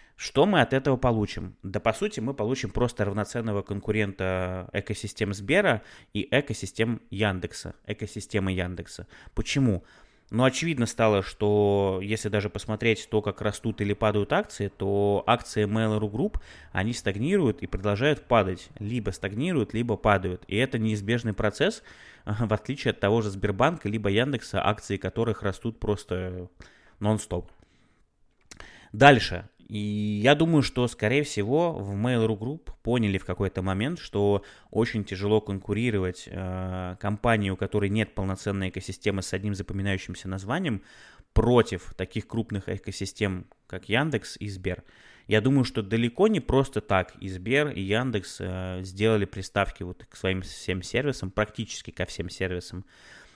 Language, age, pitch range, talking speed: Russian, 20-39, 95-115 Hz, 140 wpm